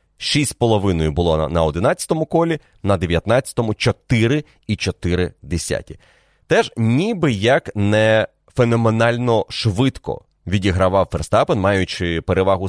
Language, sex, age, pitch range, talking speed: Ukrainian, male, 30-49, 90-115 Hz, 100 wpm